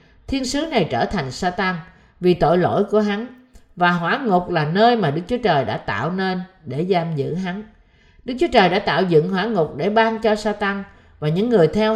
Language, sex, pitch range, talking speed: Vietnamese, female, 155-220 Hz, 215 wpm